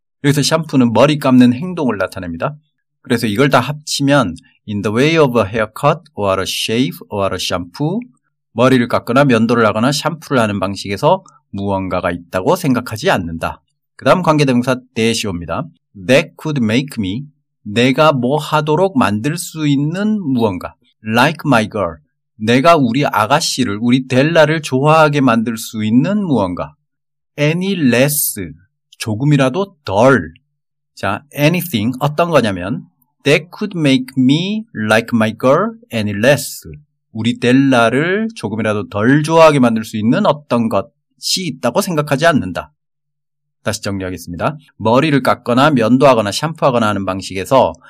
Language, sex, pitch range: Korean, male, 110-150 Hz